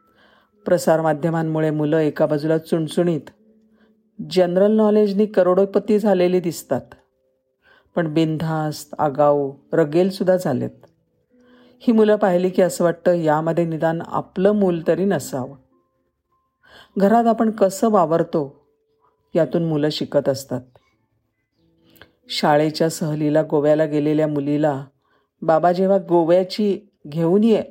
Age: 50-69